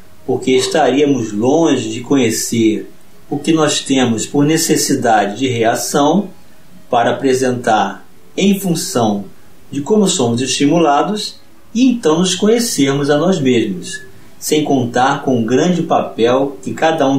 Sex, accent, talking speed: male, Brazilian, 130 wpm